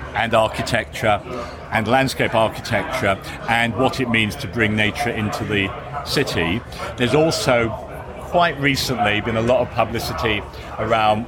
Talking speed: 140 wpm